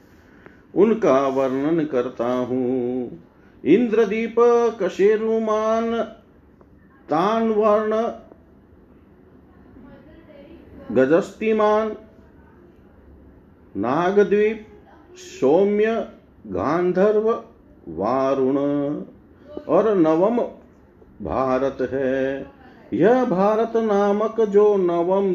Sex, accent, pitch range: male, native, 140-205 Hz